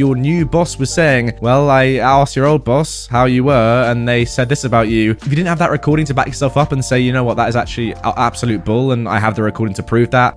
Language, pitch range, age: English, 115-155 Hz, 20-39